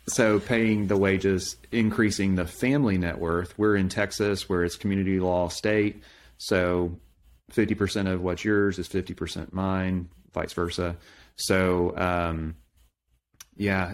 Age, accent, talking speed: 30-49, American, 130 wpm